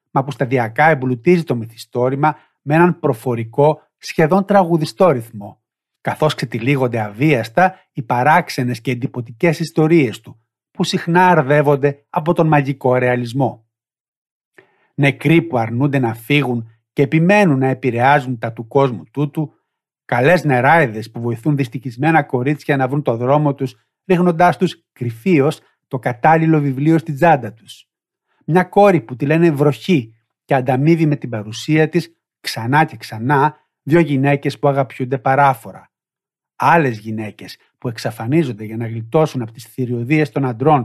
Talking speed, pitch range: 135 wpm, 125-155 Hz